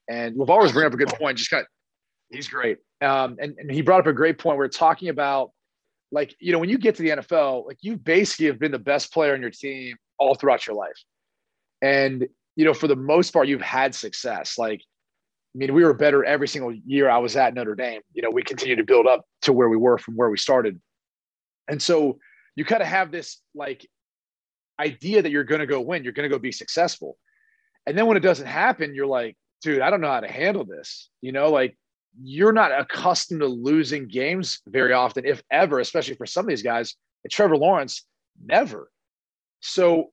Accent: American